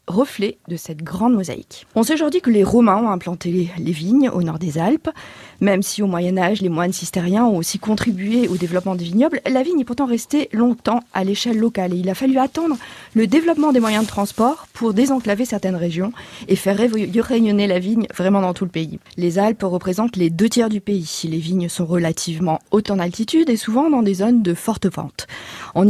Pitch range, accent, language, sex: 180-240 Hz, French, French, female